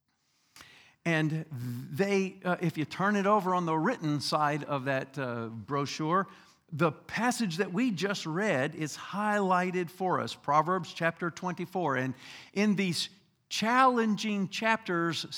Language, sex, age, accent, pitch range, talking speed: English, male, 50-69, American, 160-210 Hz, 135 wpm